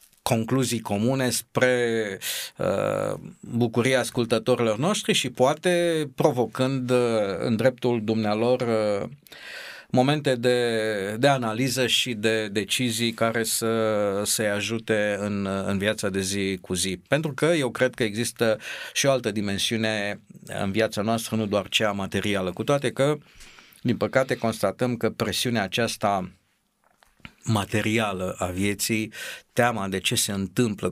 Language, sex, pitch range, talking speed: Romanian, male, 100-125 Hz, 130 wpm